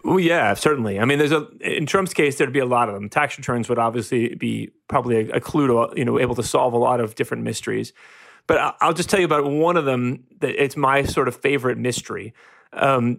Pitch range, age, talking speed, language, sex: 125-165 Hz, 30-49, 245 wpm, English, male